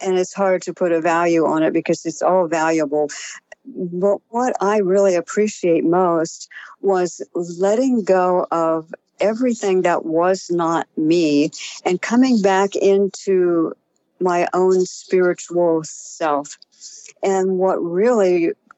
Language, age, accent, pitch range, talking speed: English, 60-79, American, 170-200 Hz, 125 wpm